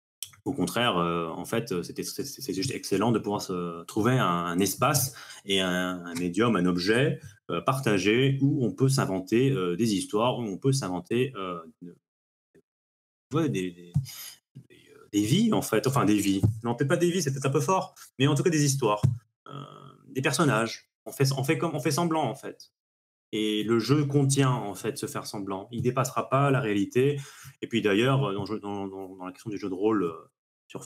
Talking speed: 190 wpm